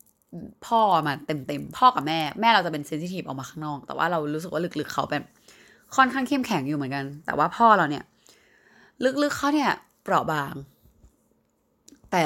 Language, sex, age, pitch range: Thai, female, 20-39, 150-200 Hz